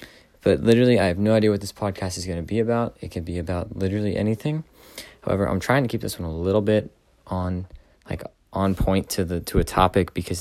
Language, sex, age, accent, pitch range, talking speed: English, male, 20-39, American, 90-110 Hz, 230 wpm